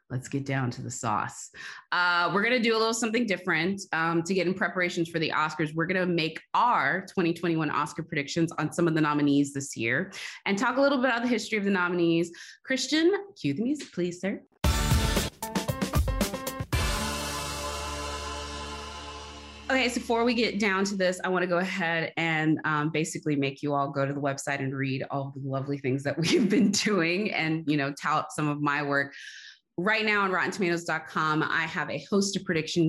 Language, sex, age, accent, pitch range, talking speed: English, female, 20-39, American, 140-180 Hz, 195 wpm